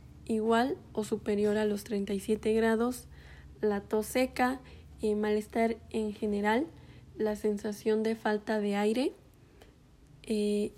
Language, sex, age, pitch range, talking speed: Spanish, female, 10-29, 210-230 Hz, 120 wpm